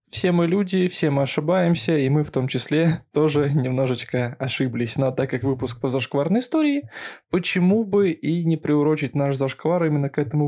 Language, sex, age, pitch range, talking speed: Russian, male, 20-39, 135-180 Hz, 180 wpm